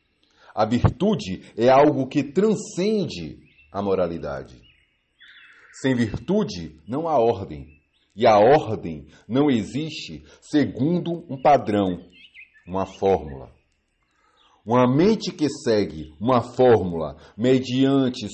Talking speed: 100 wpm